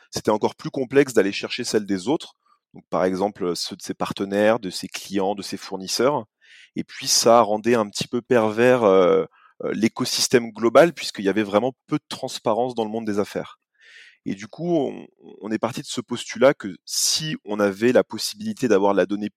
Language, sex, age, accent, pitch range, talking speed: French, male, 30-49, French, 100-125 Hz, 190 wpm